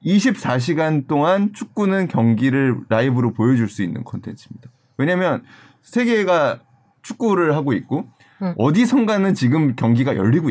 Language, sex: Korean, male